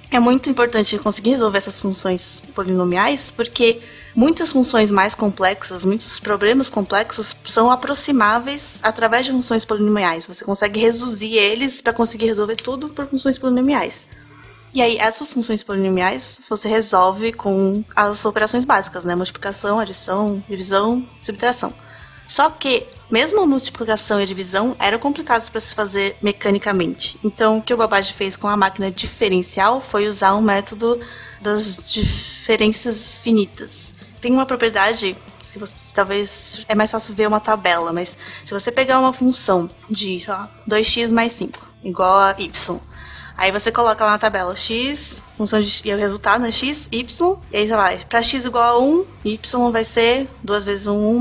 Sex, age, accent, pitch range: female, 20-39, Brazilian, 200-240 Hz